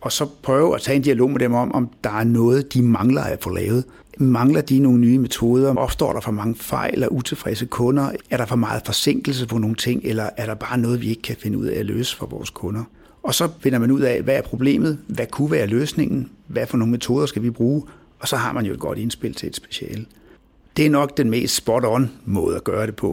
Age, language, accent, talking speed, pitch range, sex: 60-79, Danish, native, 255 wpm, 115-140 Hz, male